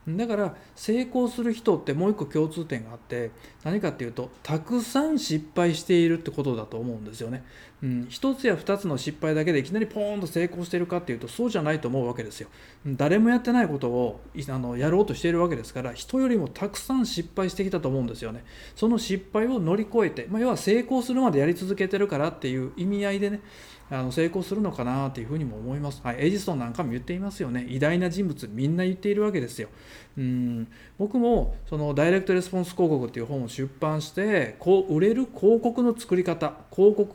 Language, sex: Japanese, male